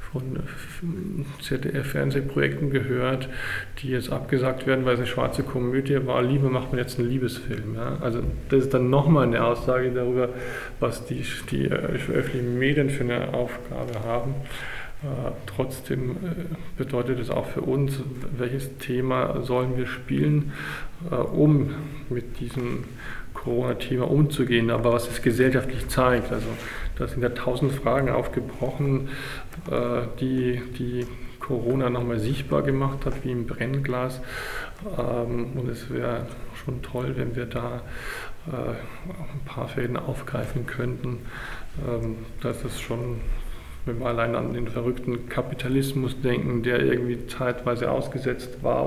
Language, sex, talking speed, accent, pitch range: German, male, 130 wpm, German, 120-135 Hz